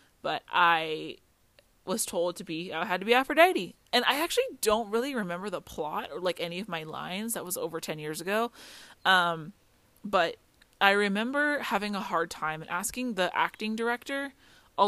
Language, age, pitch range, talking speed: English, 20-39, 165-200 Hz, 180 wpm